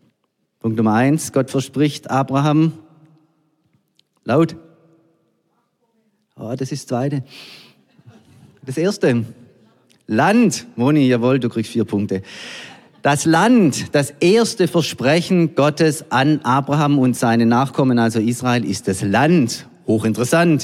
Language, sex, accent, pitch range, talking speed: German, male, German, 110-150 Hz, 110 wpm